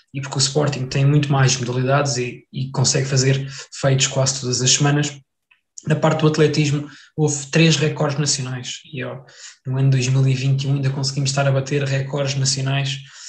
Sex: male